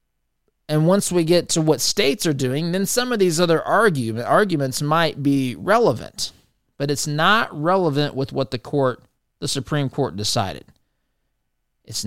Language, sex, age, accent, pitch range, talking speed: English, male, 30-49, American, 115-145 Hz, 160 wpm